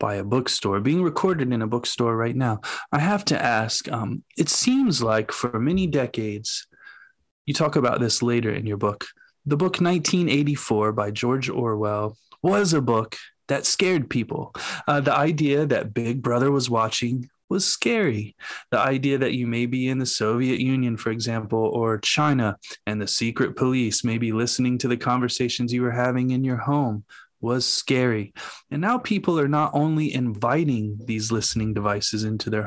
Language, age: English, 20-39